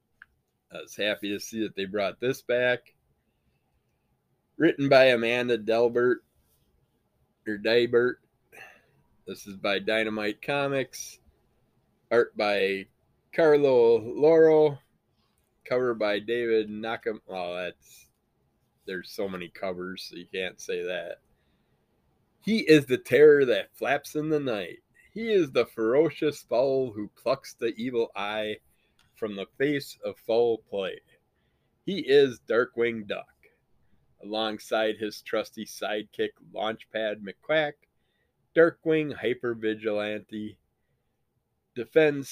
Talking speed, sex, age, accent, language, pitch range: 110 wpm, male, 20-39, American, English, 105-145 Hz